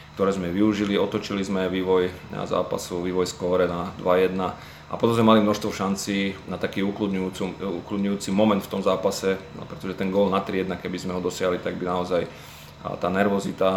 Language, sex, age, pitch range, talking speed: Slovak, male, 30-49, 90-100 Hz, 160 wpm